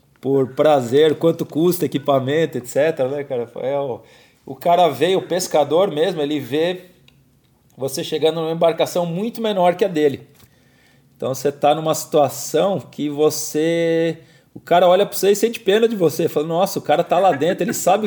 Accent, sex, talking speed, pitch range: Brazilian, male, 165 wpm, 130-165 Hz